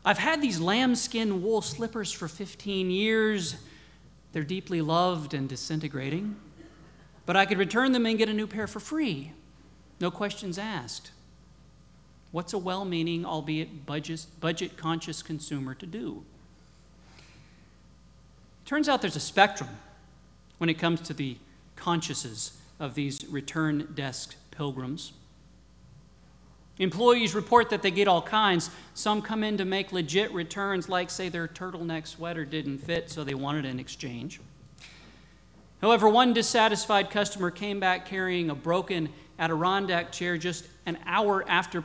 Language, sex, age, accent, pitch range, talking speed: English, male, 40-59, American, 160-210 Hz, 140 wpm